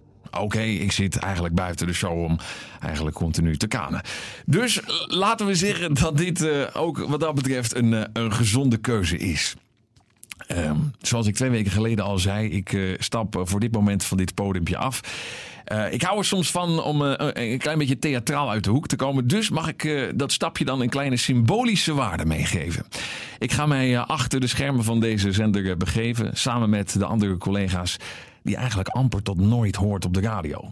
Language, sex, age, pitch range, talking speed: Dutch, male, 50-69, 100-135 Hz, 200 wpm